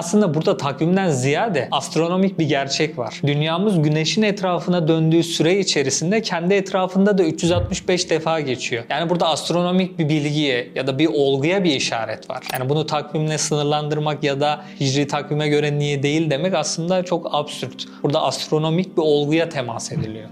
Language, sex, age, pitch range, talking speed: Turkish, male, 40-59, 145-180 Hz, 155 wpm